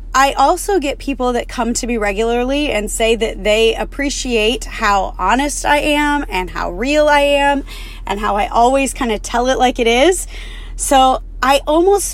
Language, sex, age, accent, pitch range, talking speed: English, female, 20-39, American, 215-285 Hz, 185 wpm